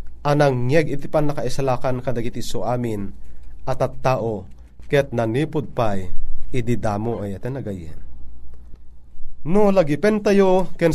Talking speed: 115 wpm